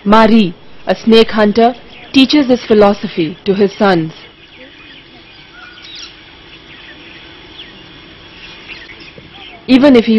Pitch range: 190-230 Hz